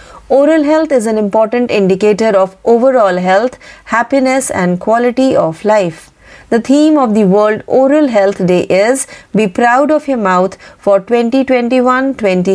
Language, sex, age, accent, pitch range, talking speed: Marathi, female, 30-49, native, 200-255 Hz, 145 wpm